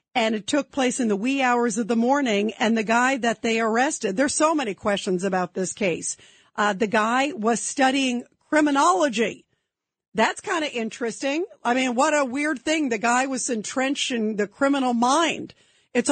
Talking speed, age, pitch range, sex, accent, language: 180 wpm, 50-69, 215-265 Hz, female, American, English